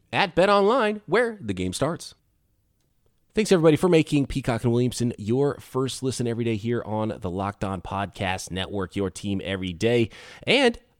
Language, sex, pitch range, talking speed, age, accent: English, male, 110-155 Hz, 170 wpm, 20-39, American